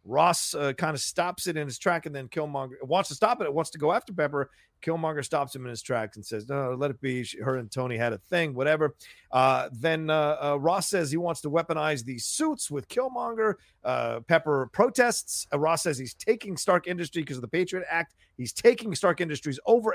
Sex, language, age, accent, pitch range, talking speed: male, English, 40-59, American, 135-200 Hz, 225 wpm